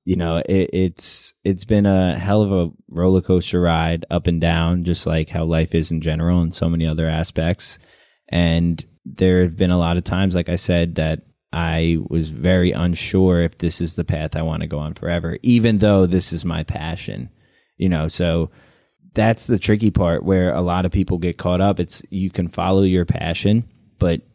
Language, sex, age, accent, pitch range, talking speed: English, male, 20-39, American, 85-95 Hz, 205 wpm